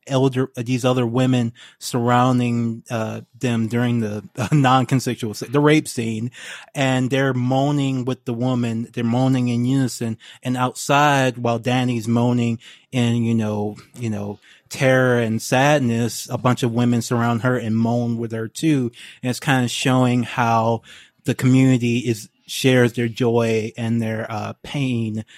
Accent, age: American, 20-39